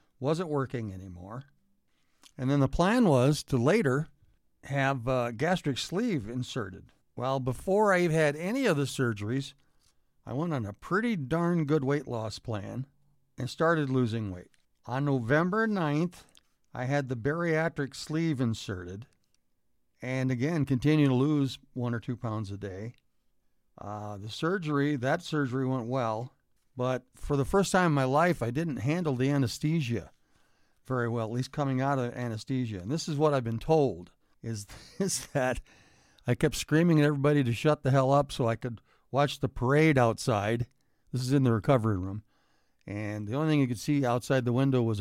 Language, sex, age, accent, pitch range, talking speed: English, male, 50-69, American, 115-150 Hz, 175 wpm